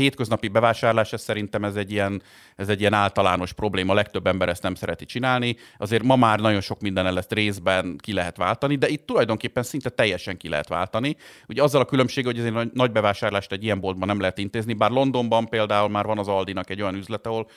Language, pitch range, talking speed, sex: Hungarian, 95-115 Hz, 215 wpm, male